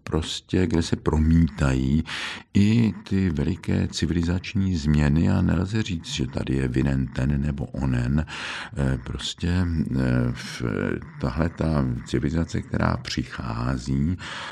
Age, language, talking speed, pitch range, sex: 60-79, Czech, 110 wpm, 65-85 Hz, male